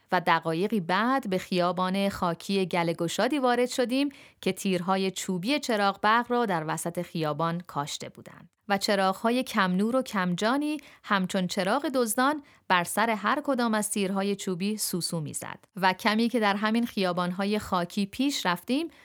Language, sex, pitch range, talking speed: Persian, female, 170-220 Hz, 150 wpm